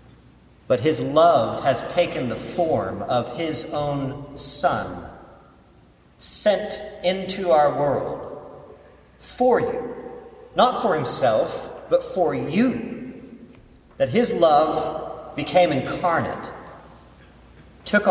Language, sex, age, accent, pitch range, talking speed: English, male, 40-59, American, 120-195 Hz, 95 wpm